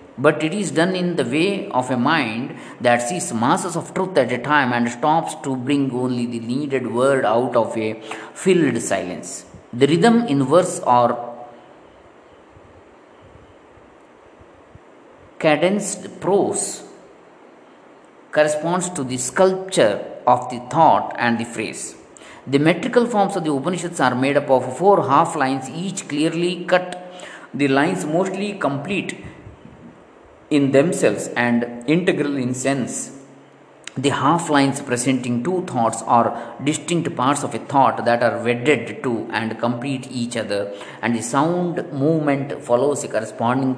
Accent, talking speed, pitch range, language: native, 140 wpm, 120-160 Hz, Kannada